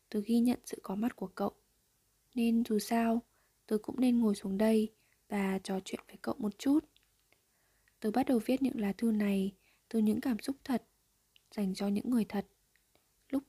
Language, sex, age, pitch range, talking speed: Vietnamese, female, 20-39, 200-250 Hz, 190 wpm